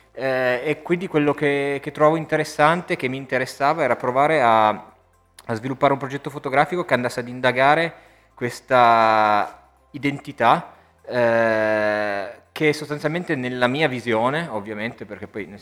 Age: 20-39